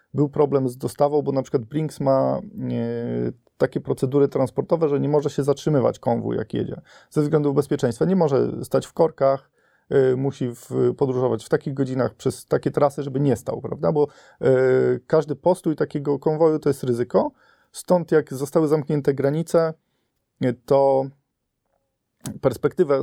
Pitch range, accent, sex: 130-155 Hz, native, male